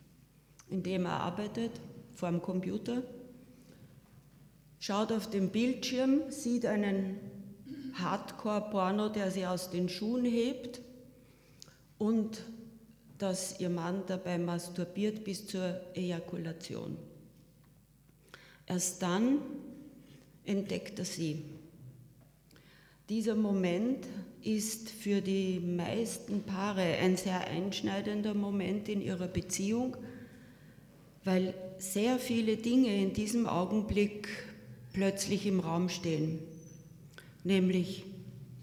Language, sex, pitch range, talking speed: German, female, 155-210 Hz, 95 wpm